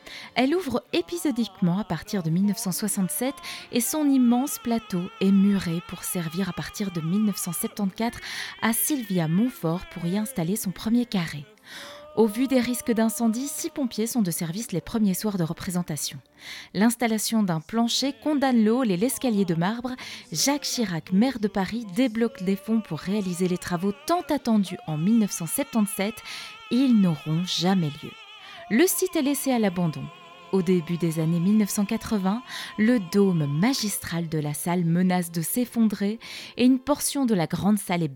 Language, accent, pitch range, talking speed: French, French, 175-235 Hz, 155 wpm